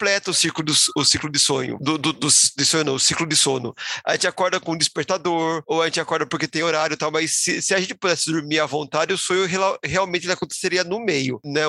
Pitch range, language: 155-210 Hz, Portuguese